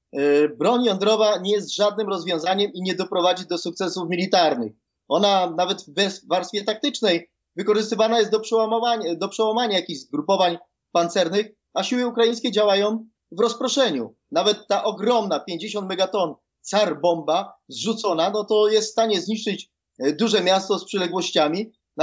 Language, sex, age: Polish, male, 30-49